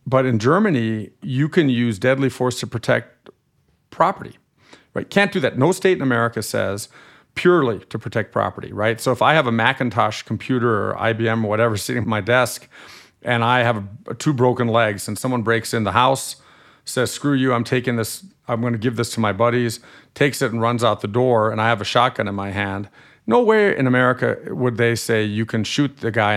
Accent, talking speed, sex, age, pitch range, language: American, 210 wpm, male, 50-69, 110-130 Hz, English